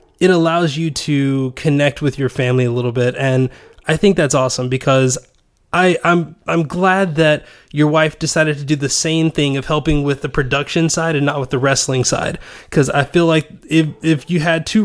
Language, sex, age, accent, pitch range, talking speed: English, male, 20-39, American, 135-160 Hz, 205 wpm